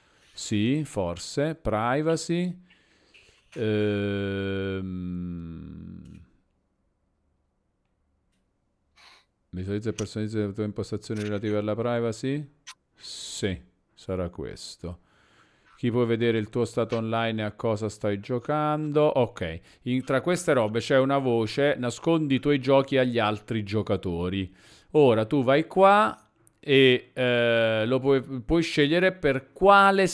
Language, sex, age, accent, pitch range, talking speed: Italian, male, 40-59, native, 105-135 Hz, 110 wpm